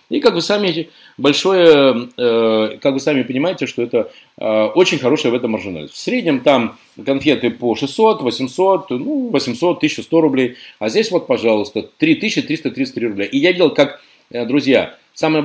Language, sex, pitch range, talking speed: Russian, male, 120-165 Hz, 150 wpm